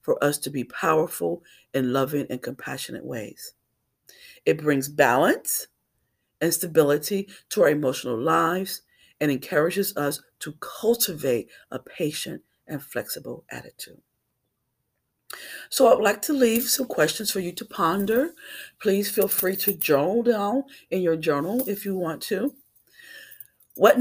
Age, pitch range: 40-59, 150-230 Hz